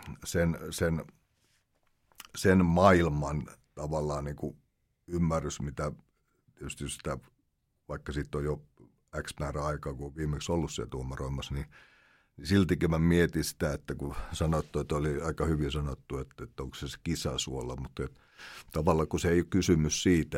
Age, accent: 60-79, native